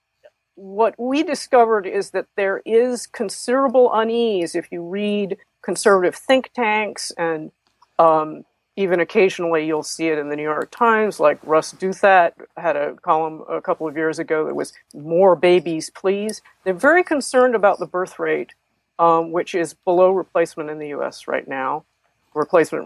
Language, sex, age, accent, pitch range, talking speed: English, female, 50-69, American, 155-215 Hz, 160 wpm